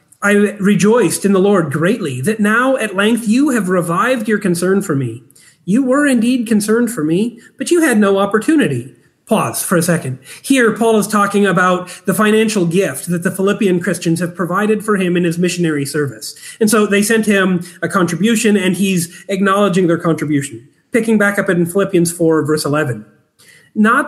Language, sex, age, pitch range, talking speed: English, male, 30-49, 175-225 Hz, 180 wpm